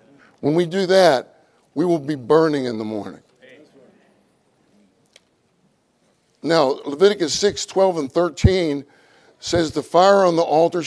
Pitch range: 140-185 Hz